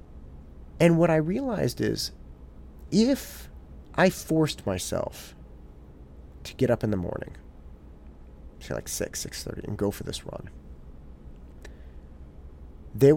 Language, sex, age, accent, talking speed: English, male, 30-49, American, 115 wpm